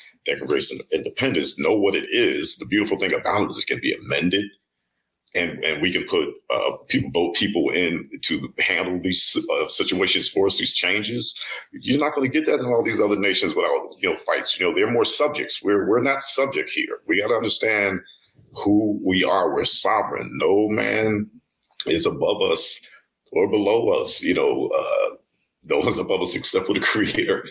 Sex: male